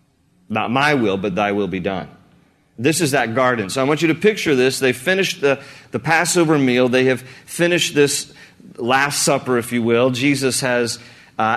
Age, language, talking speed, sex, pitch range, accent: 40-59, English, 190 wpm, male, 120-155 Hz, American